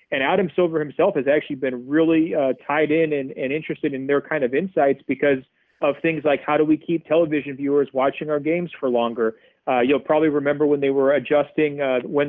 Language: English